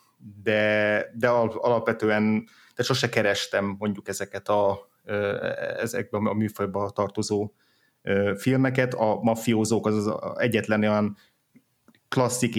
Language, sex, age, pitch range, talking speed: Hungarian, male, 30-49, 100-120 Hz, 95 wpm